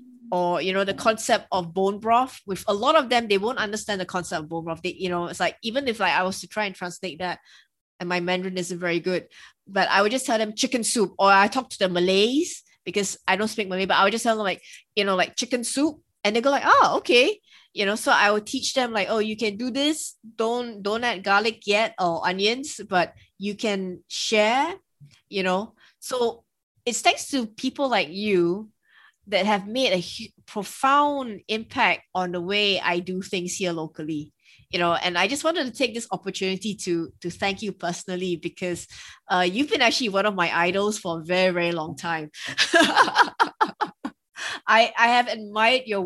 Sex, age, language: female, 20-39, English